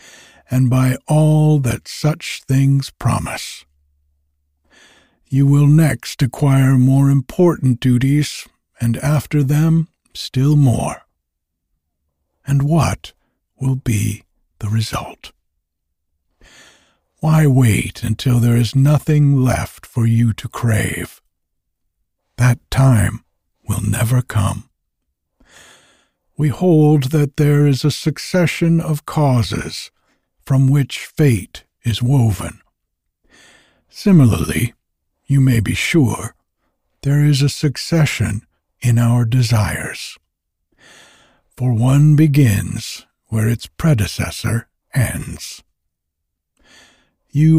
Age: 60-79